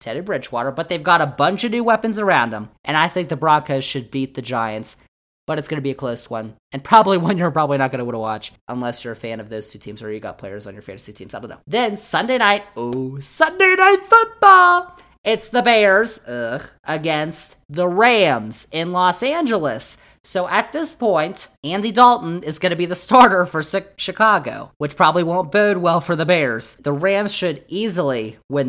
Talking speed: 210 wpm